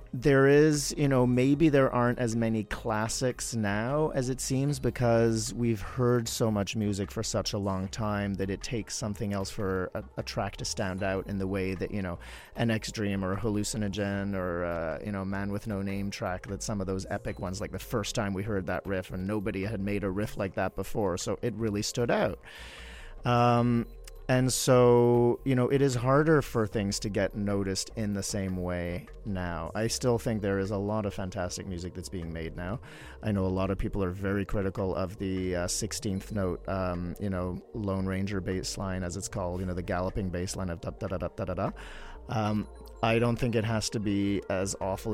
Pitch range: 95-115 Hz